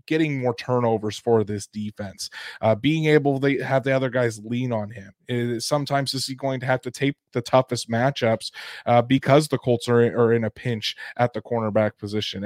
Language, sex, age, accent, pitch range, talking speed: English, male, 20-39, American, 120-140 Hz, 200 wpm